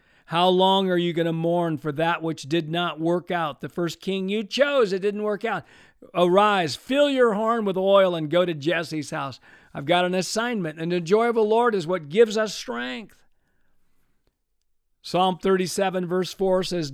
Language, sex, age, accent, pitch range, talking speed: English, male, 50-69, American, 160-190 Hz, 190 wpm